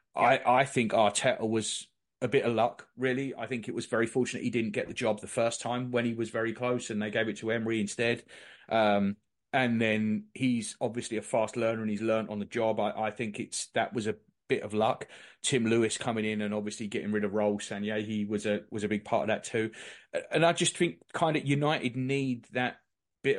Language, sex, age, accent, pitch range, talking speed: English, male, 30-49, British, 105-120 Hz, 235 wpm